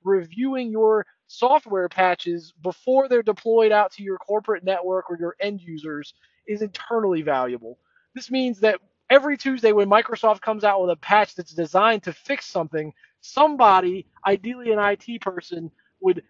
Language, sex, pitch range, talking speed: English, male, 185-225 Hz, 155 wpm